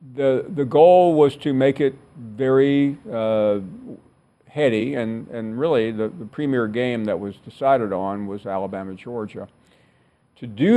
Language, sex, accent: English, male, American